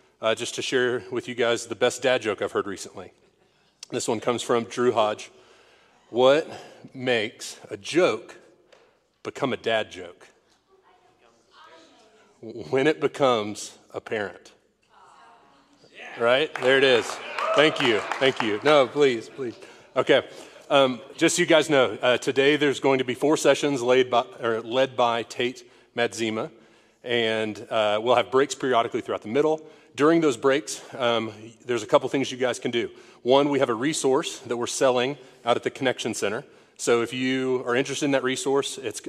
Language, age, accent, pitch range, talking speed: English, 30-49, American, 115-145 Hz, 165 wpm